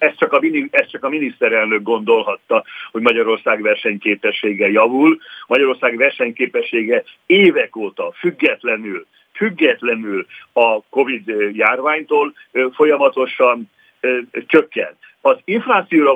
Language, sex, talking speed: Hungarian, male, 80 wpm